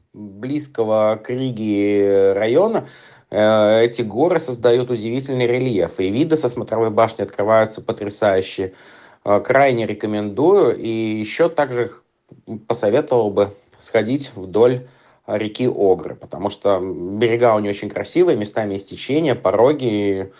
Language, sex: Russian, male